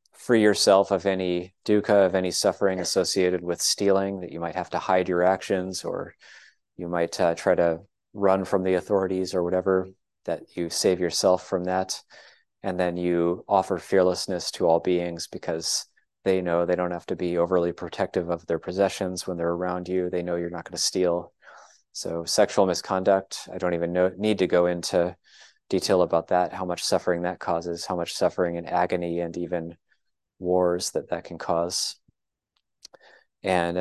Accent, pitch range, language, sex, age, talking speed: American, 85-95 Hz, English, male, 30-49, 180 wpm